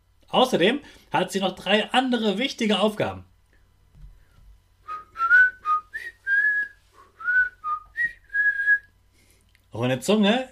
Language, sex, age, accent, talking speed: German, male, 30-49, German, 55 wpm